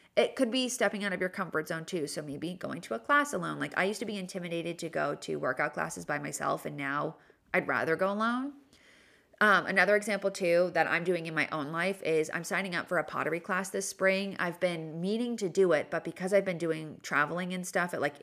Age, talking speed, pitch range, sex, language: 30-49, 240 wpm, 175-220 Hz, female, English